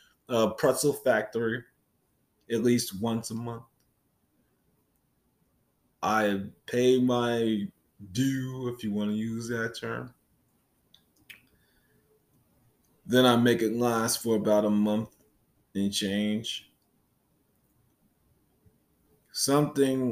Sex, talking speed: male, 90 wpm